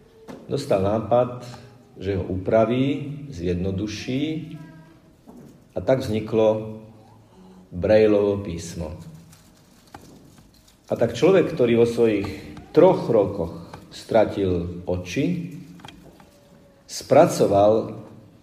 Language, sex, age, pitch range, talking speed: Slovak, male, 40-59, 95-130 Hz, 70 wpm